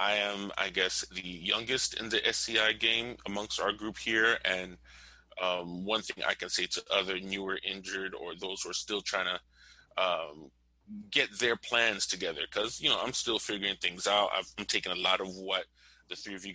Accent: American